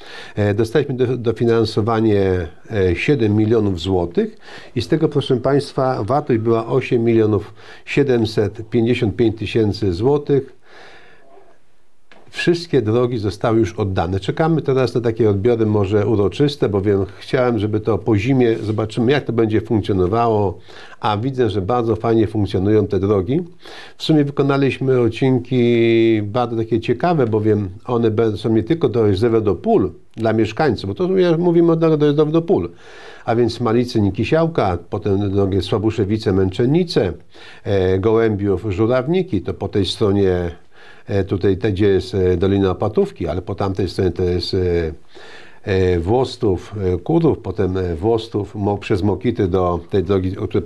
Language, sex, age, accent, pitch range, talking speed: Polish, male, 50-69, native, 100-125 Hz, 130 wpm